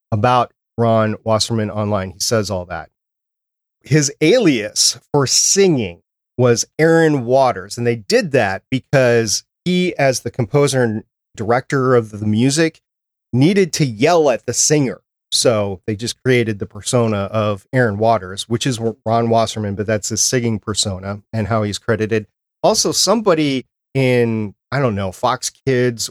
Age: 30-49